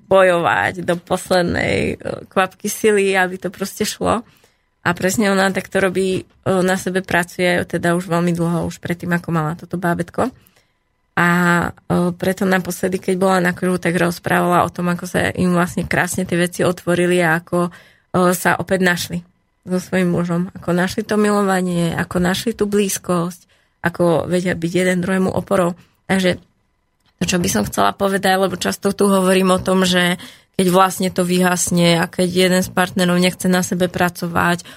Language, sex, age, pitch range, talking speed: Slovak, female, 20-39, 175-195 Hz, 160 wpm